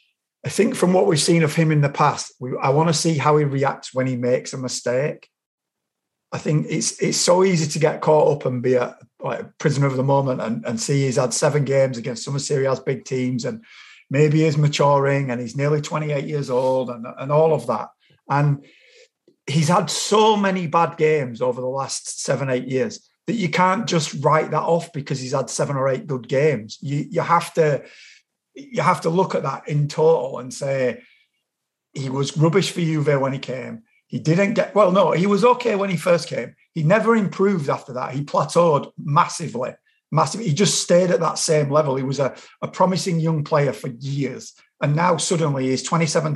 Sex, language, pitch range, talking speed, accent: male, English, 135-170 Hz, 210 wpm, British